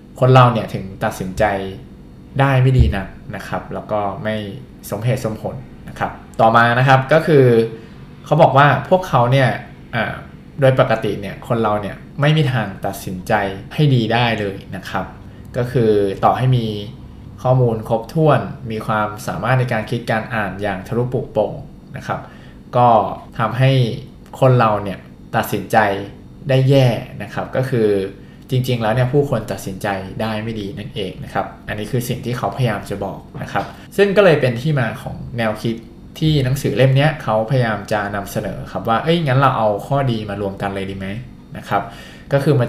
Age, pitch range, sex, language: 20-39, 105-130 Hz, male, Thai